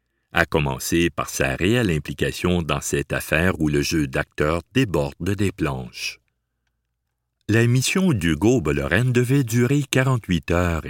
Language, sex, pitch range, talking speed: French, male, 75-115 Hz, 125 wpm